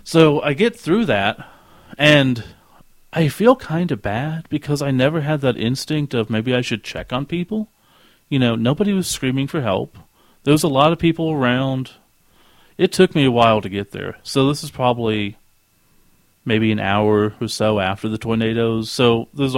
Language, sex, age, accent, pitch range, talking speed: English, male, 40-59, American, 110-140 Hz, 185 wpm